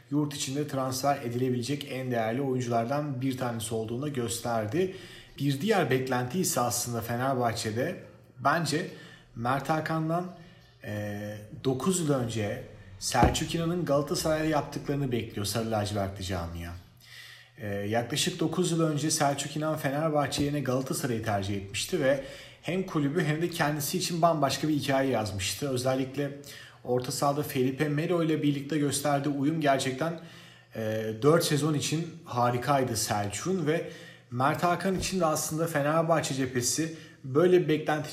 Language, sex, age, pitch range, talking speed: Turkish, male, 40-59, 125-155 Hz, 130 wpm